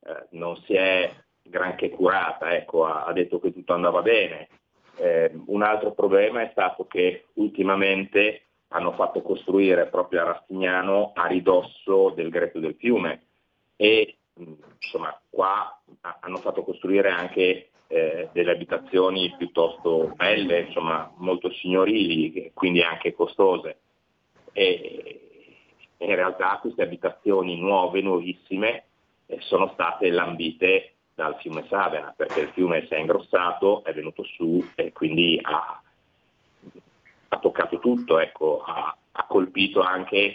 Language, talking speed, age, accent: Italian, 130 wpm, 30-49, native